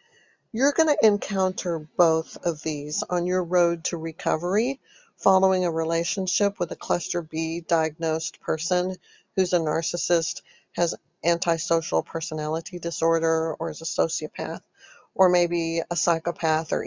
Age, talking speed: 50-69, 130 wpm